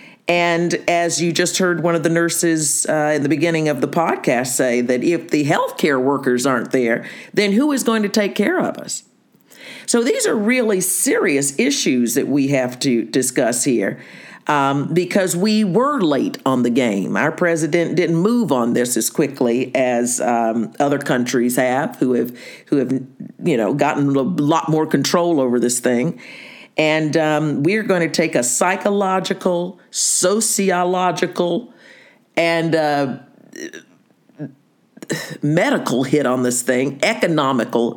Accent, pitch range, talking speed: American, 135-190 Hz, 155 wpm